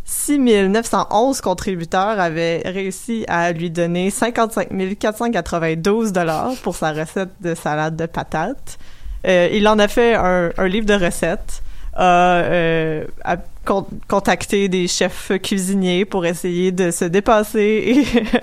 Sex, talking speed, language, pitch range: female, 135 wpm, French, 170-200 Hz